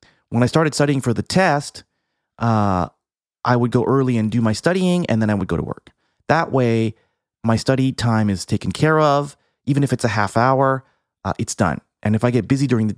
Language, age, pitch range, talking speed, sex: English, 30-49, 100-130 Hz, 220 wpm, male